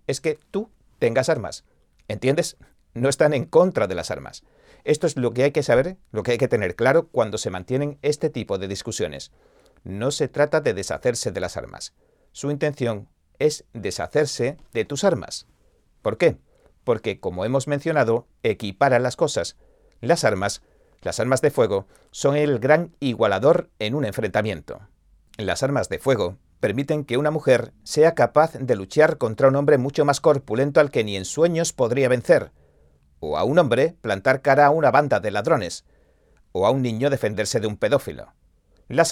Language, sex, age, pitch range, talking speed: Spanish, male, 40-59, 110-150 Hz, 175 wpm